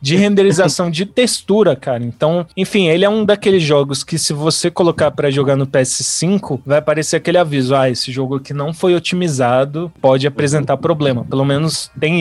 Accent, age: Brazilian, 20-39